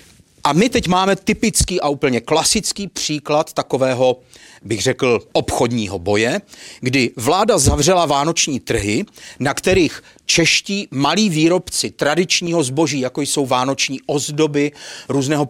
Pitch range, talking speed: 135-180 Hz, 120 wpm